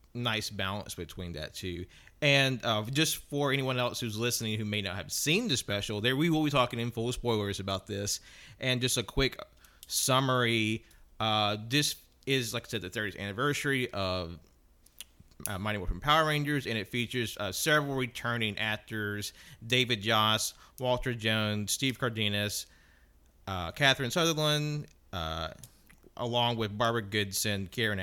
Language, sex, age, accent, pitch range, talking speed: English, male, 30-49, American, 95-120 Hz, 160 wpm